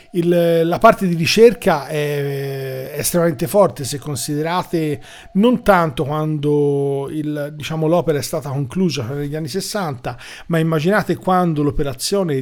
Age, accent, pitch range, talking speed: 40-59, native, 135-170 Hz, 135 wpm